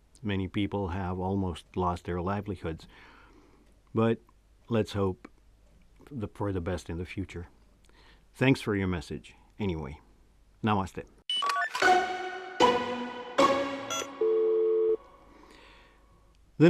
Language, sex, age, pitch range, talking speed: English, male, 50-69, 95-145 Hz, 85 wpm